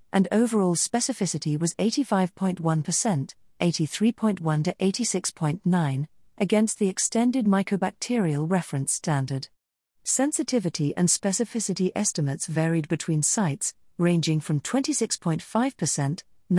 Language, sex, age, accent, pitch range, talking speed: English, female, 50-69, British, 155-210 Hz, 85 wpm